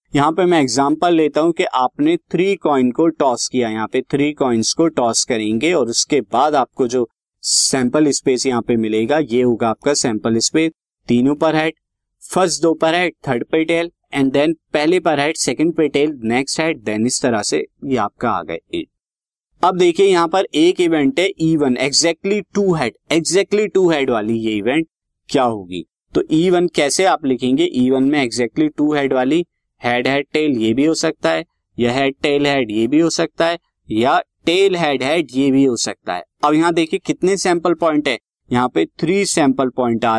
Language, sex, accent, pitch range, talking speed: Hindi, male, native, 130-170 Hz, 190 wpm